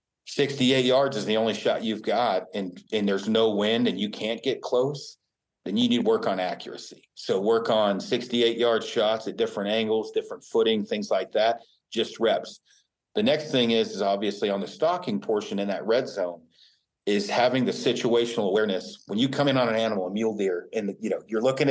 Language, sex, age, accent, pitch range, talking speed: English, male, 40-59, American, 105-125 Hz, 205 wpm